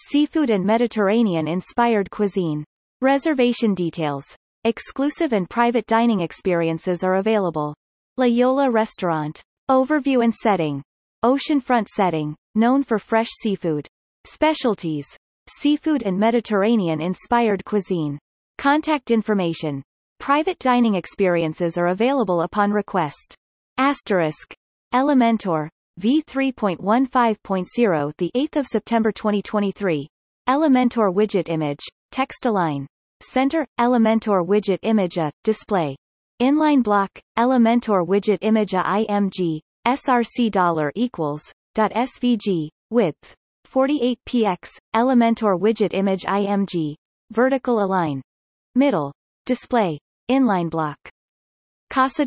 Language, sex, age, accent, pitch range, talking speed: English, female, 30-49, American, 180-245 Hz, 95 wpm